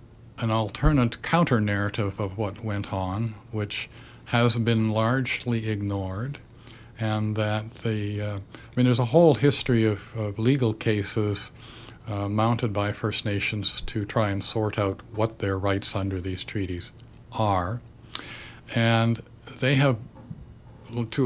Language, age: English, 50-69